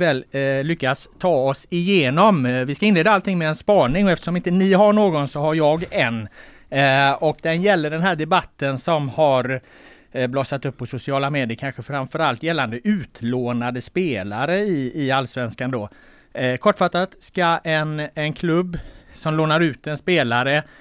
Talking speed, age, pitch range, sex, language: 150 wpm, 30-49, 125-160 Hz, male, Swedish